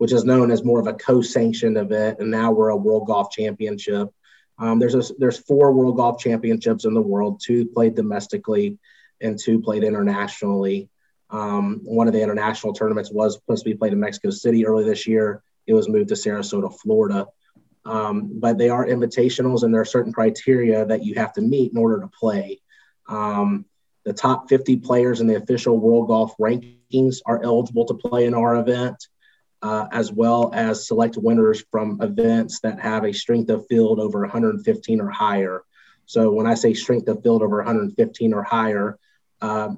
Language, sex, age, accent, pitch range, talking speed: English, male, 30-49, American, 110-125 Hz, 185 wpm